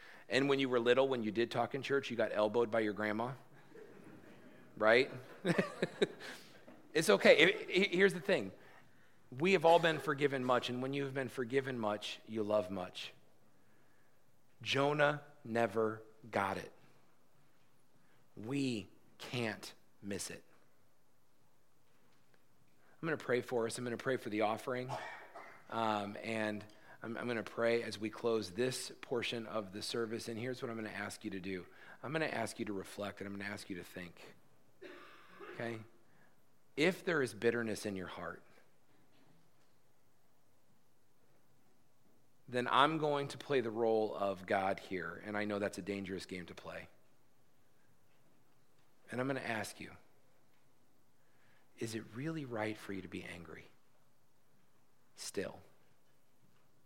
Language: English